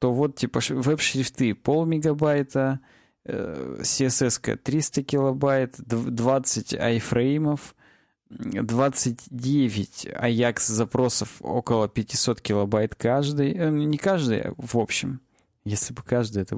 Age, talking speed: 20-39, 90 wpm